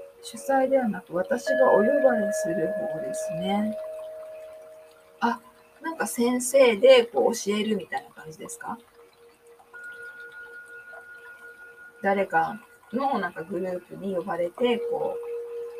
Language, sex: Japanese, female